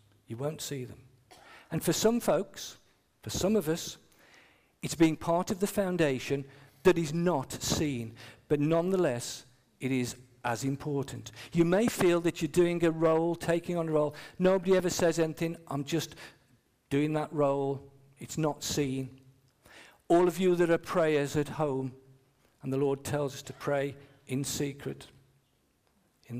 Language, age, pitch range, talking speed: English, 50-69, 125-160 Hz, 160 wpm